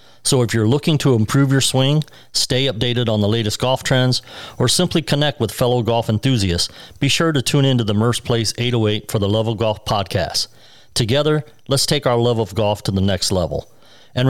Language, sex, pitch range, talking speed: English, male, 110-140 Hz, 200 wpm